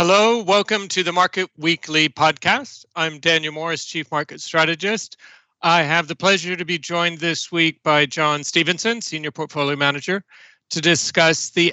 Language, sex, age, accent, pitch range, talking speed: English, male, 40-59, American, 145-175 Hz, 160 wpm